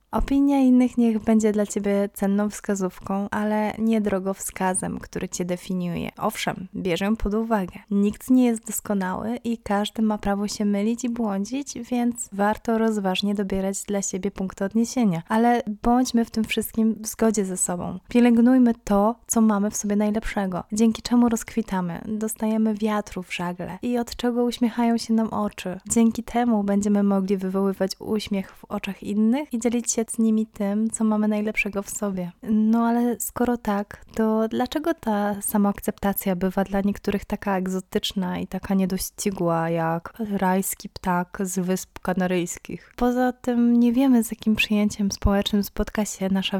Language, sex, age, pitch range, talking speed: Polish, female, 20-39, 195-225 Hz, 155 wpm